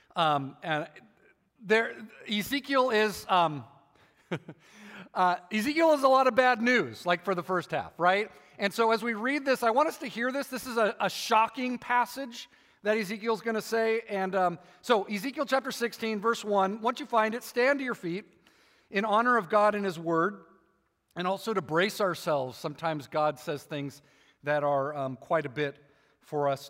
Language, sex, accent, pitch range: English, male, American, 150-230 Hz